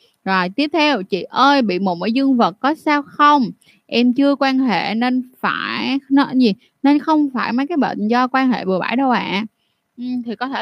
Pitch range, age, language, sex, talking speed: 210-270 Hz, 20-39, Vietnamese, female, 215 wpm